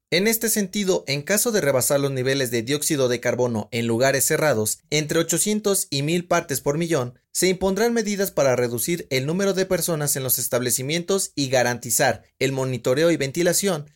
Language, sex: Spanish, male